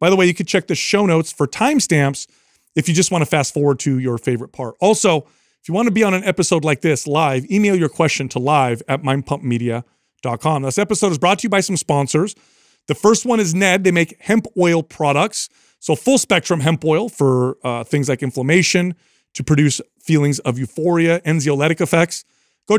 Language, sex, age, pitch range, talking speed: English, male, 40-59, 145-195 Hz, 205 wpm